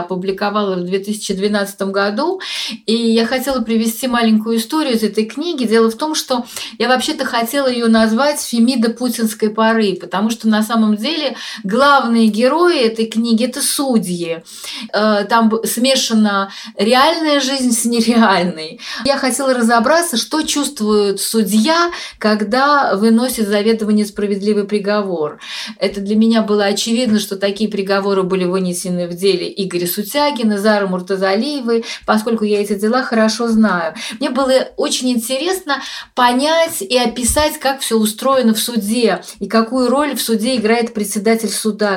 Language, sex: Russian, female